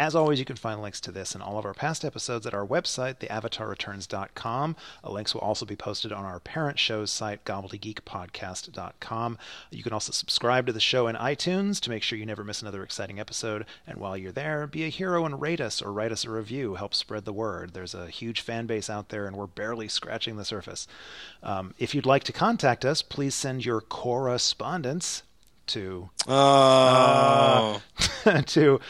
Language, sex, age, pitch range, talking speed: English, male, 30-49, 105-125 Hz, 195 wpm